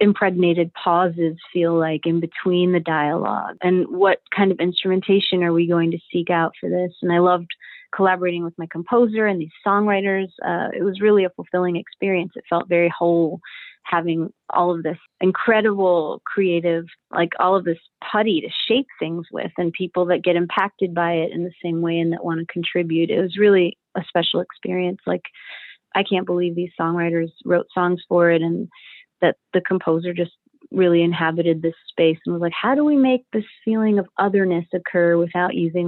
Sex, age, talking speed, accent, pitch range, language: female, 30-49, 185 wpm, American, 170-195 Hz, English